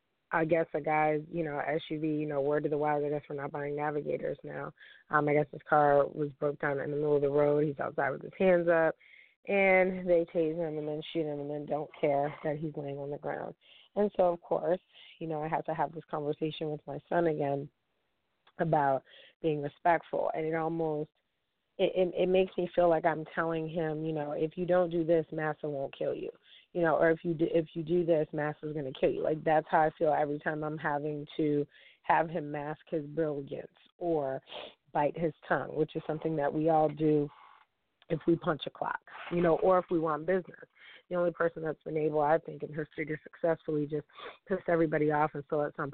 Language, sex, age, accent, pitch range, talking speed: English, female, 20-39, American, 150-170 Hz, 230 wpm